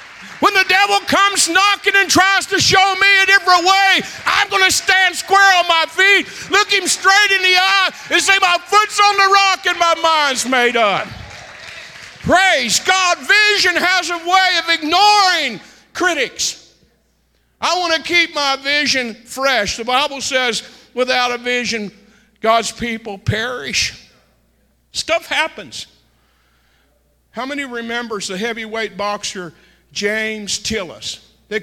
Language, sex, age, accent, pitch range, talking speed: English, male, 50-69, American, 210-330 Hz, 140 wpm